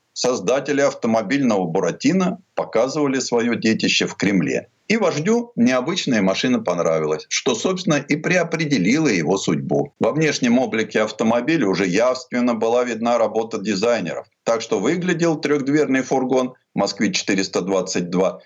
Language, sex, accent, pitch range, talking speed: Russian, male, native, 120-190 Hz, 115 wpm